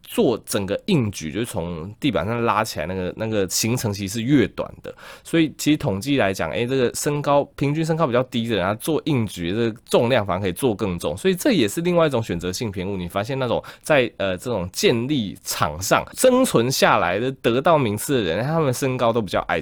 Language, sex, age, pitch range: Chinese, male, 20-39, 90-135 Hz